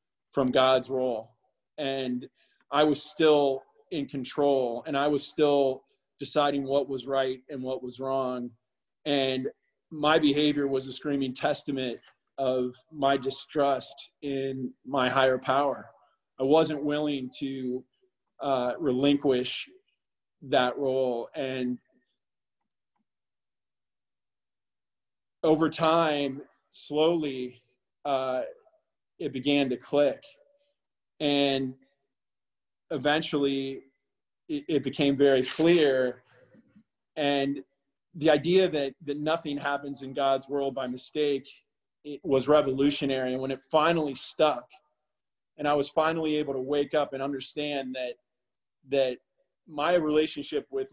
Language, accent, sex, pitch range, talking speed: English, American, male, 130-150 Hz, 110 wpm